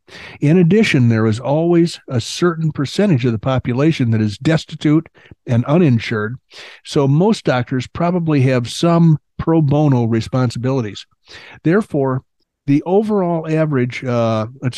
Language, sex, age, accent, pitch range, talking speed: English, male, 60-79, American, 120-155 Hz, 125 wpm